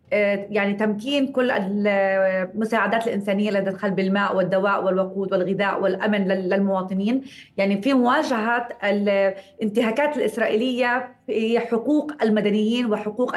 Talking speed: 95 wpm